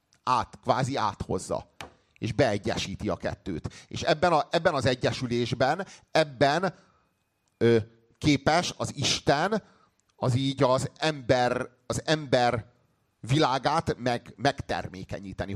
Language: Hungarian